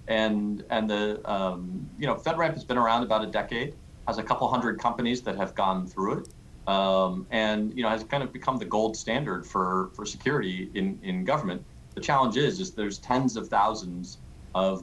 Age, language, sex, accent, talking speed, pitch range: 40-59, English, male, American, 200 wpm, 90-110 Hz